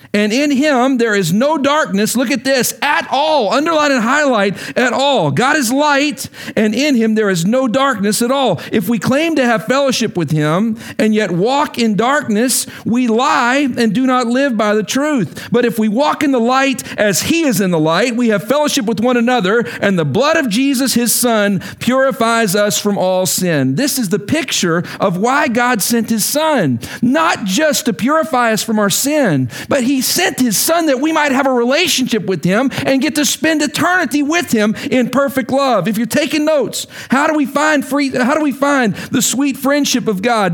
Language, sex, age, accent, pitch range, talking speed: English, male, 50-69, American, 220-285 Hz, 210 wpm